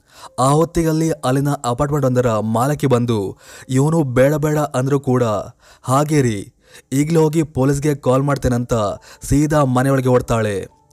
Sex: male